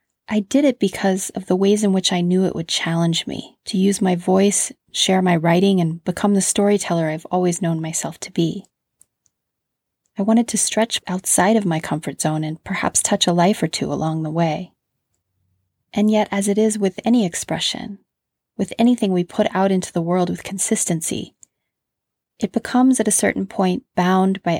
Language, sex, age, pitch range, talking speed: English, female, 30-49, 170-215 Hz, 190 wpm